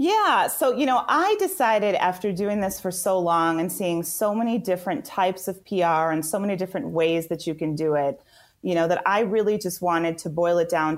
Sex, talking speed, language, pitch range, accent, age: female, 225 wpm, English, 165-195 Hz, American, 30-49